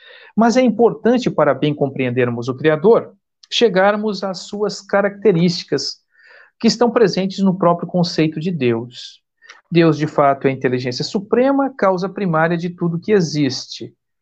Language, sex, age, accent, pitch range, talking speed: Portuguese, male, 60-79, Brazilian, 150-205 Hz, 140 wpm